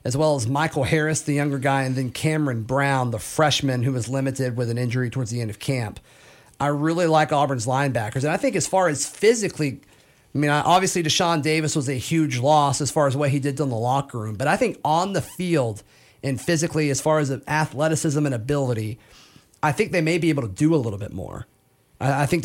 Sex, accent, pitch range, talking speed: male, American, 125-155 Hz, 225 wpm